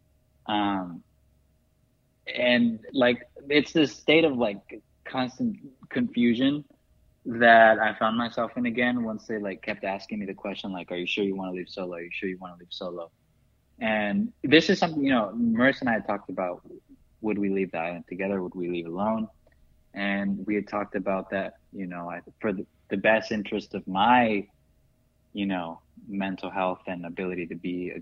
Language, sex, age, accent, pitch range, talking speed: English, male, 20-39, American, 90-110 Hz, 190 wpm